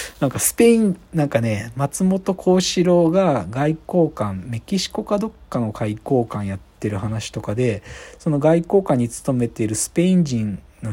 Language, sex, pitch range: Japanese, male, 105-170 Hz